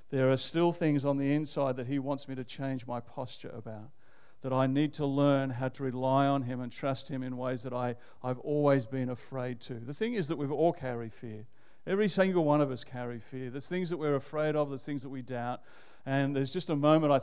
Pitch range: 130-150 Hz